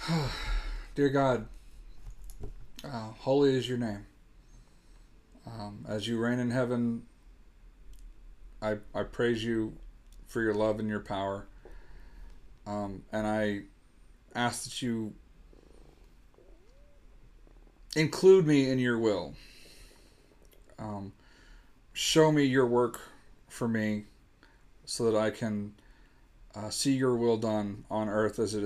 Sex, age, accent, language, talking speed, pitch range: male, 40-59, American, English, 115 wpm, 105-120 Hz